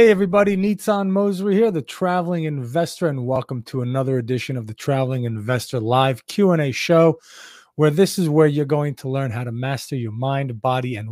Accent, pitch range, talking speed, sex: American, 125-155 Hz, 190 wpm, male